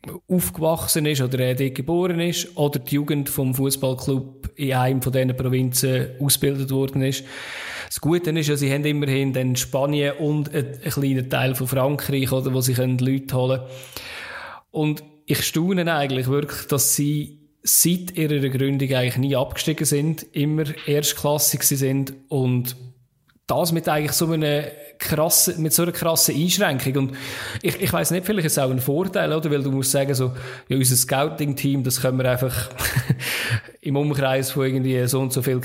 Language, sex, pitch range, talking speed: German, male, 130-150 Hz, 170 wpm